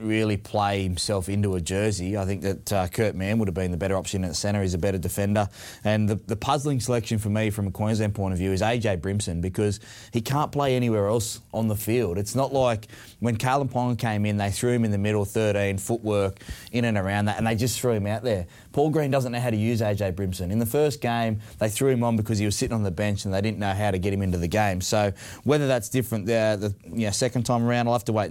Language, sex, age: English, male, 20-39